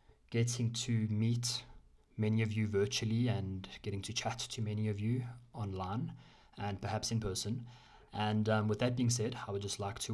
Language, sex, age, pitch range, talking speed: English, male, 20-39, 105-120 Hz, 185 wpm